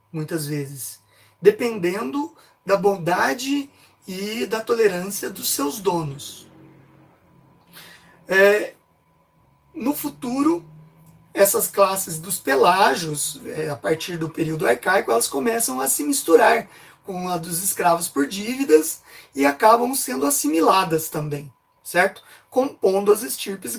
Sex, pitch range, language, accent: male, 160-225 Hz, Portuguese, Brazilian